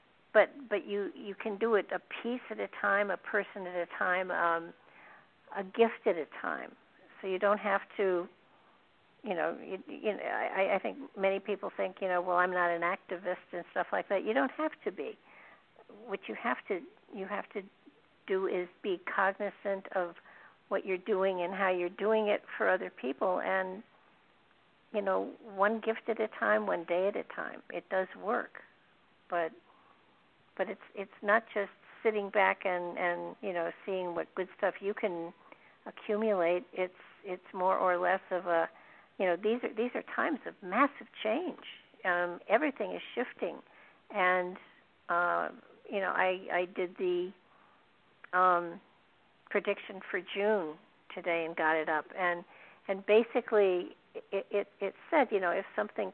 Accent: American